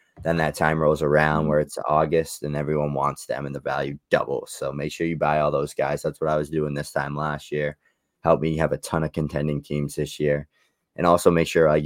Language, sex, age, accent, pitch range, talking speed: English, male, 20-39, American, 75-80 Hz, 245 wpm